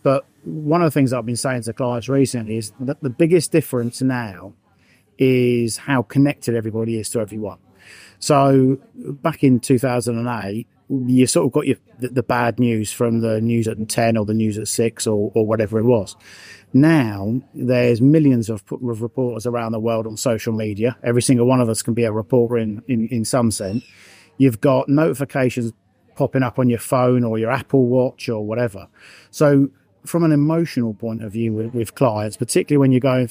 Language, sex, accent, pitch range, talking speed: English, male, British, 110-135 Hz, 190 wpm